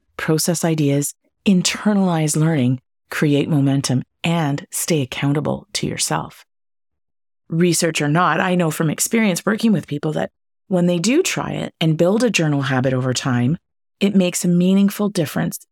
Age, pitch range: 30-49, 140-180 Hz